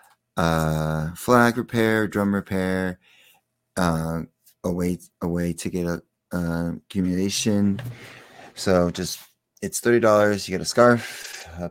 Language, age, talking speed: English, 30-49, 125 wpm